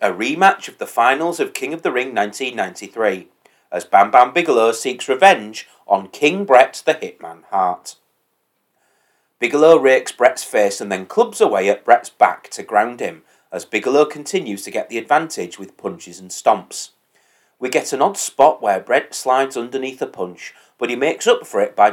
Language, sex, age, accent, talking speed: English, male, 30-49, British, 180 wpm